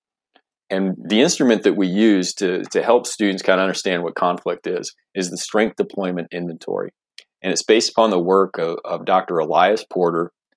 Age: 40-59